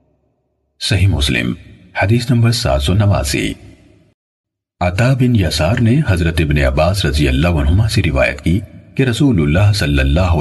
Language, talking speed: Urdu, 135 wpm